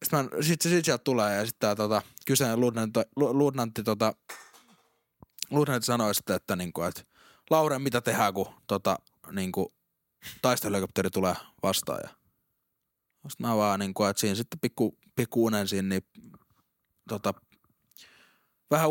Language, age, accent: Finnish, 20-39, native